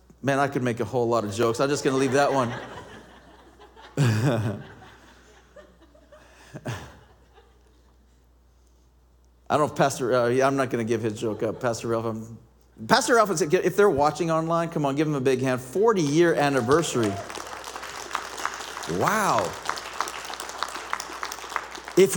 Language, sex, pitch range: English, male, 120-190 Hz